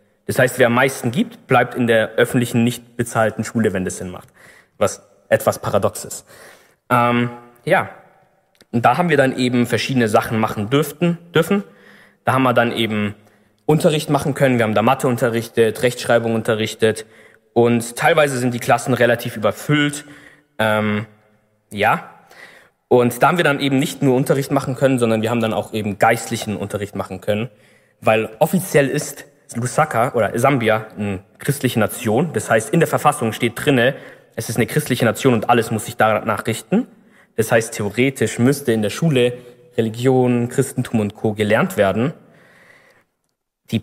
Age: 20-39